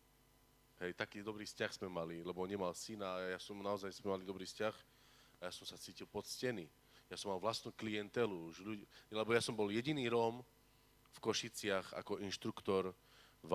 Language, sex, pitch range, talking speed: Slovak, male, 95-125 Hz, 180 wpm